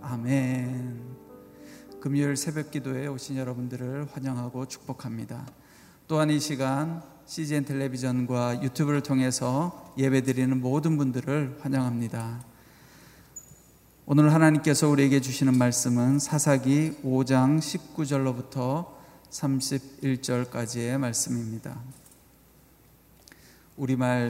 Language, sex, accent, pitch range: Korean, male, native, 125-140 Hz